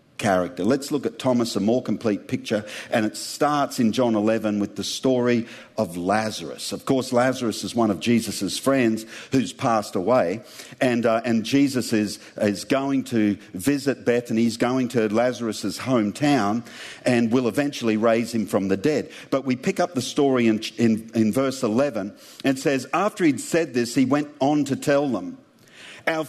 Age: 50-69